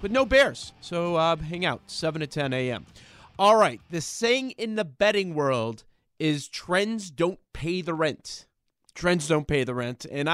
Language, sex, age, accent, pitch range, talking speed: English, male, 30-49, American, 155-200 Hz, 180 wpm